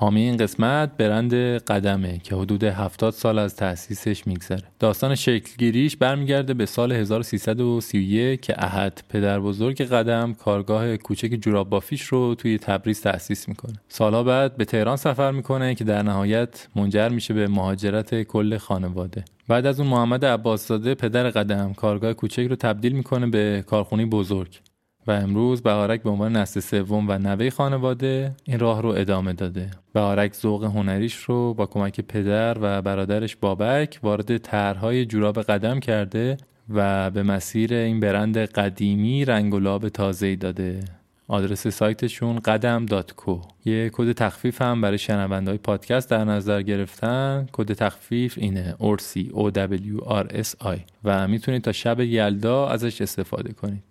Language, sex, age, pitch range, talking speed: Persian, male, 20-39, 100-120 Hz, 140 wpm